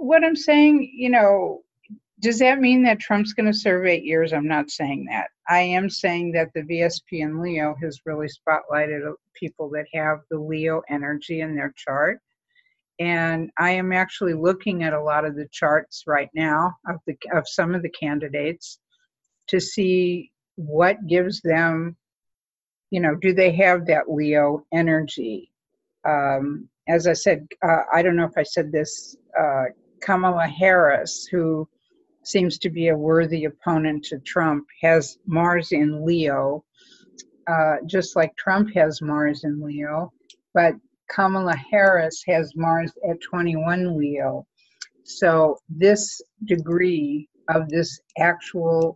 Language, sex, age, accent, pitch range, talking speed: English, female, 60-79, American, 155-185 Hz, 150 wpm